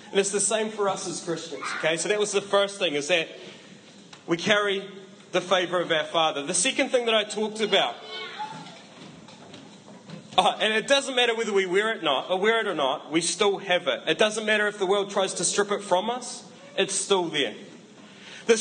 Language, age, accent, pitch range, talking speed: English, 20-39, Australian, 185-225 Hz, 215 wpm